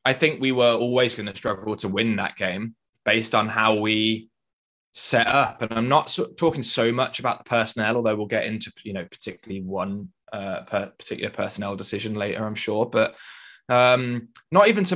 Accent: British